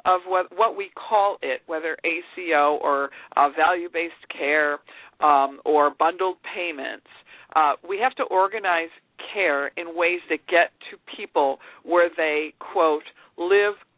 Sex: female